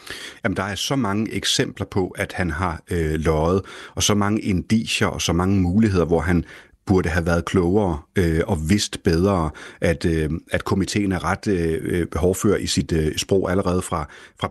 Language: Danish